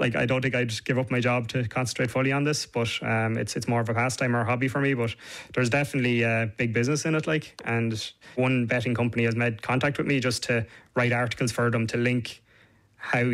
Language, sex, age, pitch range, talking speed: English, male, 20-39, 115-130 Hz, 240 wpm